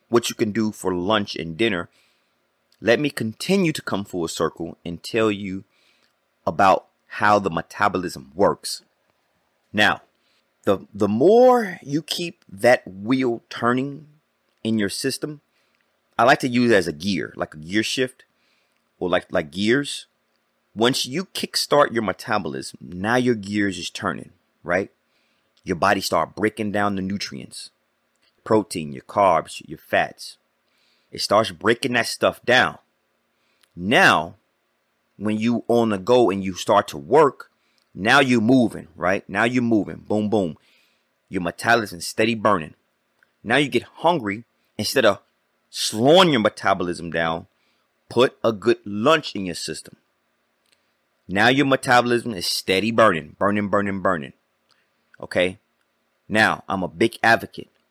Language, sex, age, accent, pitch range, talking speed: English, male, 30-49, American, 95-120 Hz, 140 wpm